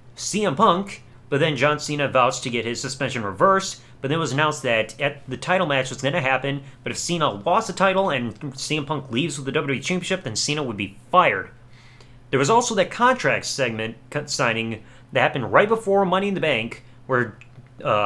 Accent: American